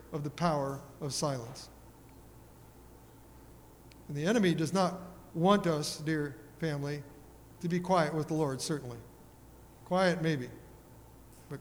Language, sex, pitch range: English, male, 150-185 Hz